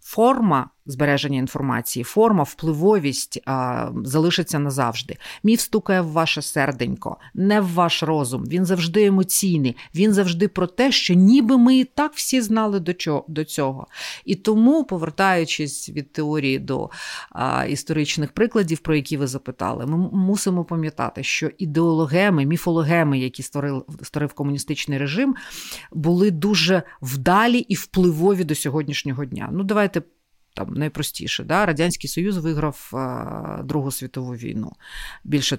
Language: Ukrainian